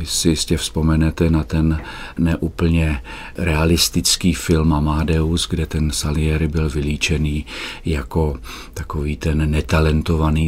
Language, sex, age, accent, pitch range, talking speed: Czech, male, 40-59, native, 75-90 Hz, 105 wpm